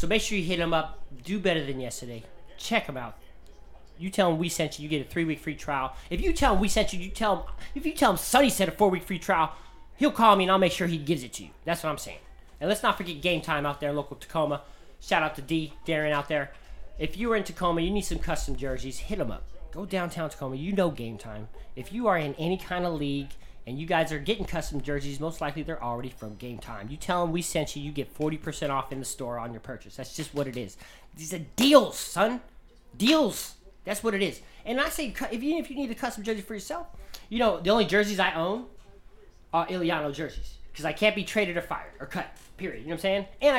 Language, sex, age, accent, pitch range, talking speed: English, male, 30-49, American, 140-200 Hz, 265 wpm